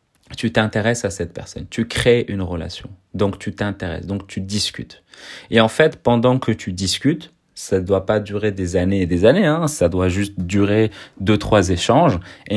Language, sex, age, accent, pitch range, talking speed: French, male, 30-49, French, 95-120 Hz, 195 wpm